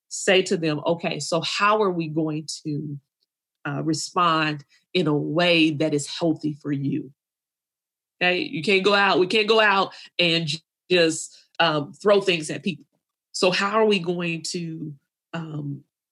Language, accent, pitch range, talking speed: English, American, 150-175 Hz, 160 wpm